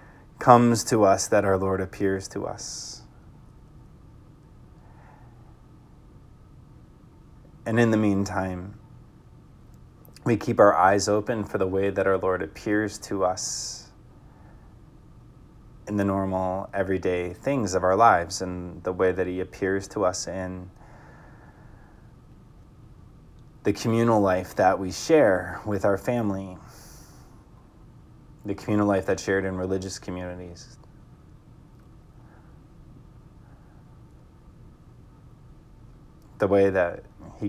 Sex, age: male, 20-39